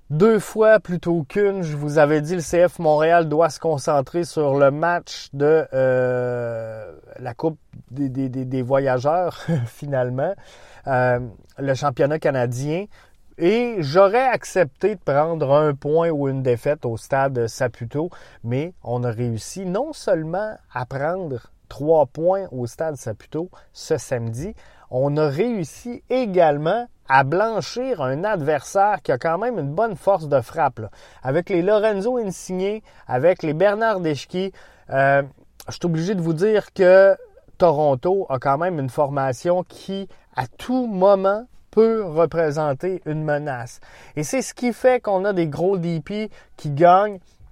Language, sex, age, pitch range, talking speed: French, male, 30-49, 135-195 Hz, 150 wpm